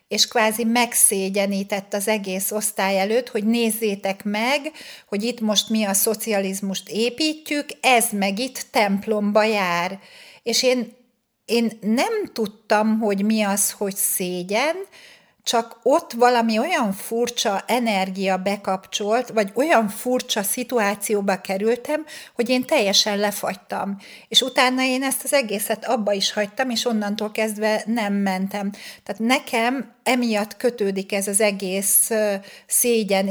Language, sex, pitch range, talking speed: Hungarian, female, 195-235 Hz, 125 wpm